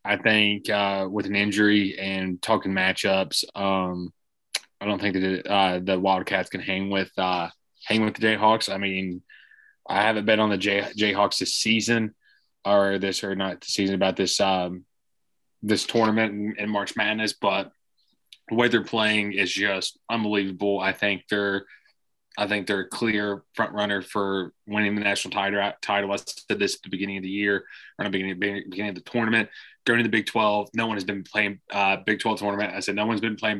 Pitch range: 95-105 Hz